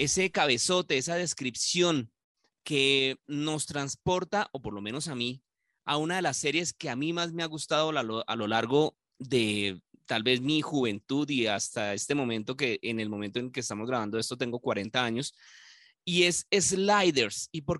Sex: male